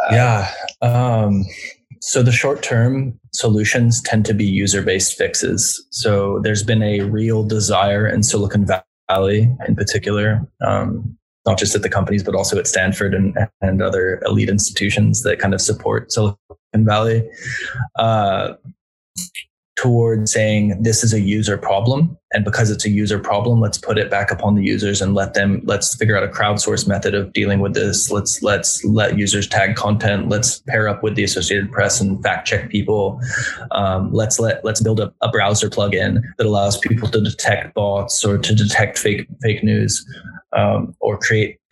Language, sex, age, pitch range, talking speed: English, male, 20-39, 100-115 Hz, 175 wpm